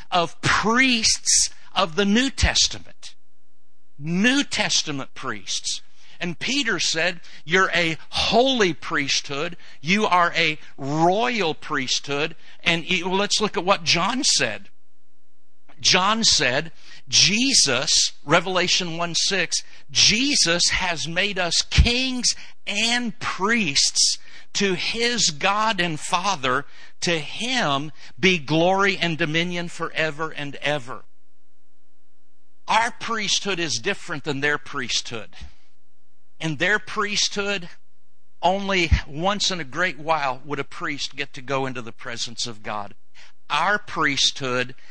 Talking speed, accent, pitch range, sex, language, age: 115 wpm, American, 135-190 Hz, male, English, 60-79